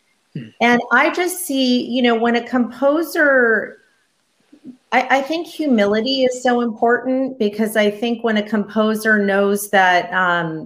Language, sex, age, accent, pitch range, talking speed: English, female, 40-59, American, 165-220 Hz, 140 wpm